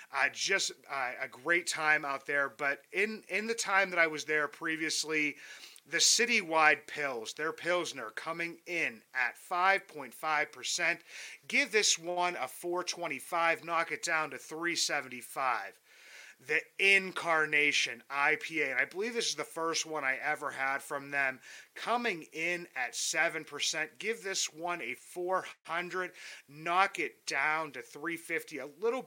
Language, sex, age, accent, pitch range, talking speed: English, male, 30-49, American, 150-180 Hz, 140 wpm